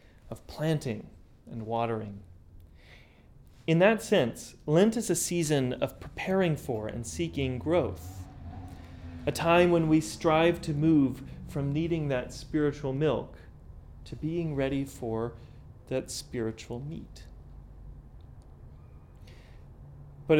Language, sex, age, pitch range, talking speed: English, male, 30-49, 110-150 Hz, 110 wpm